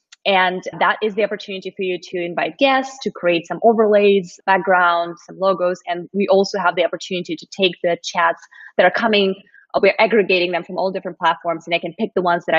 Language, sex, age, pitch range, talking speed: English, female, 20-39, 175-210 Hz, 210 wpm